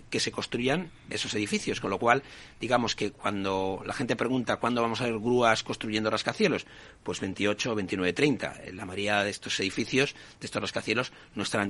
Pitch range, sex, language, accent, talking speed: 105-130 Hz, male, Spanish, Spanish, 180 wpm